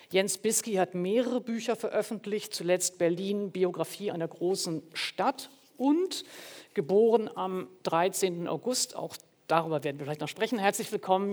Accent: German